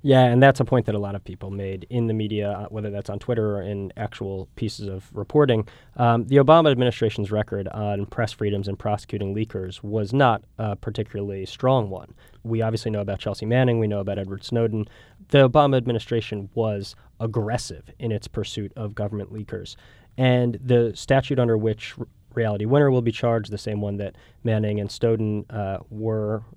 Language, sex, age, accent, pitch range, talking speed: English, male, 20-39, American, 105-120 Hz, 185 wpm